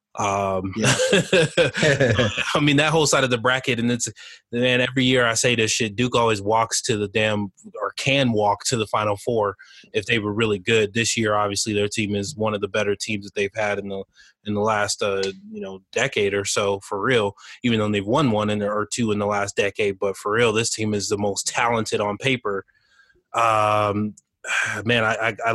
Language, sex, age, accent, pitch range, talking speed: English, male, 20-39, American, 105-120 Hz, 210 wpm